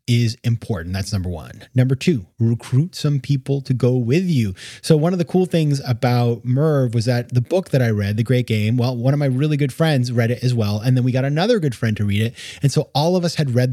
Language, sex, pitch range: English, male, 110-140 Hz